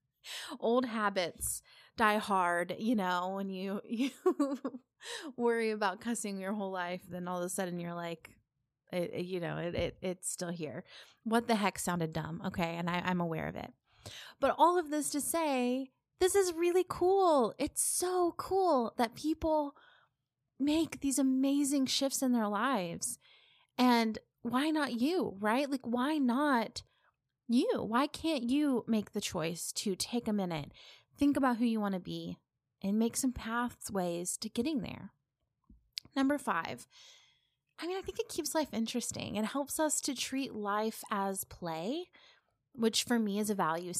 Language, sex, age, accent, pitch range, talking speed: English, female, 20-39, American, 195-280 Hz, 165 wpm